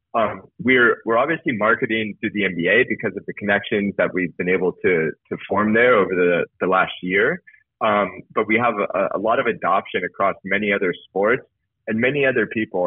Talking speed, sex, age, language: 195 wpm, male, 20-39, English